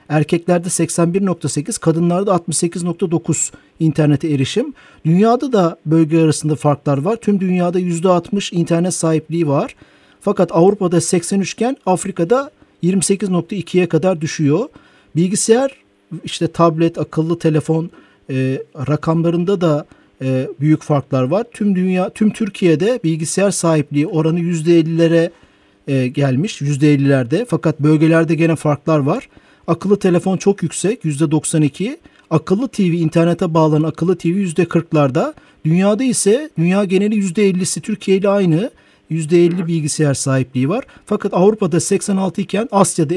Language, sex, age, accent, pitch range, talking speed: Turkish, male, 50-69, native, 155-190 Hz, 115 wpm